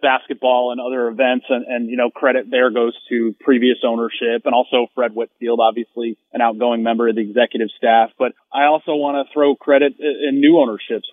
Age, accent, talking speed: 30-49, American, 195 wpm